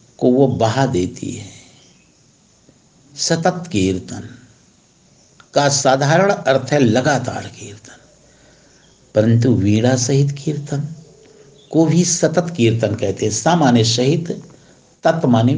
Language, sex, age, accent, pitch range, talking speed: Hindi, male, 60-79, native, 115-150 Hz, 100 wpm